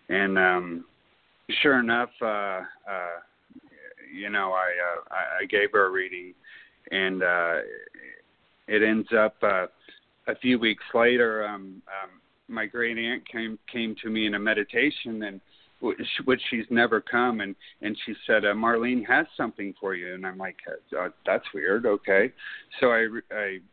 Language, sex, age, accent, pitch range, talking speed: English, male, 40-59, American, 95-120 Hz, 160 wpm